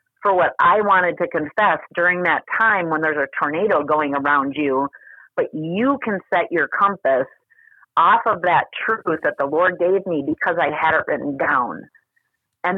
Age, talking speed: 40-59, 180 wpm